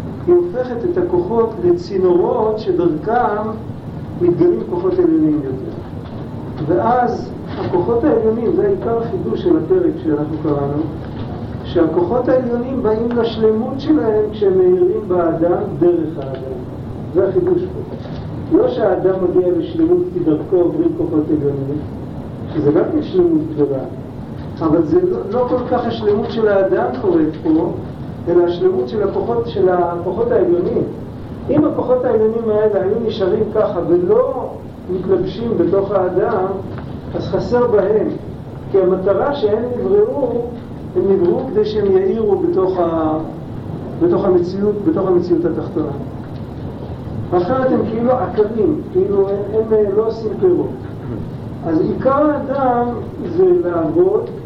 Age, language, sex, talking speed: 50-69, Hebrew, male, 115 wpm